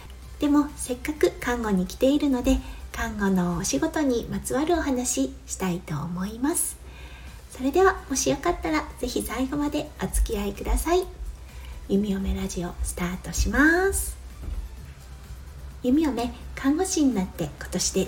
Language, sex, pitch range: Japanese, female, 190-290 Hz